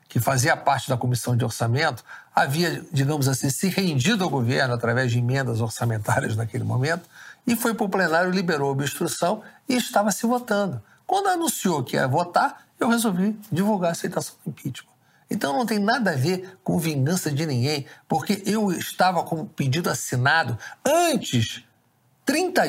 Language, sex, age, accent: Portuguese, male, 60-79, Brazilian